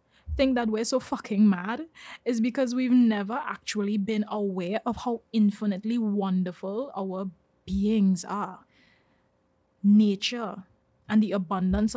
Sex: female